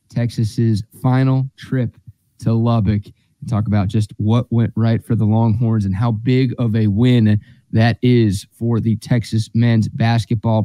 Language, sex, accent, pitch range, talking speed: English, male, American, 110-130 Hz, 150 wpm